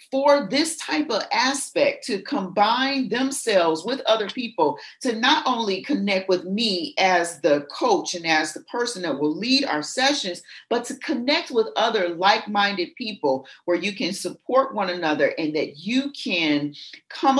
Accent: American